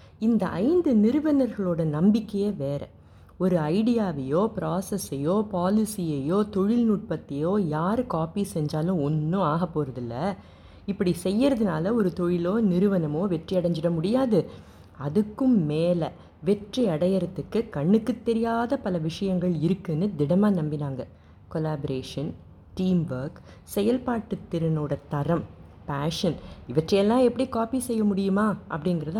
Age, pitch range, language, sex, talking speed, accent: 30-49, 150-205 Hz, Tamil, female, 100 wpm, native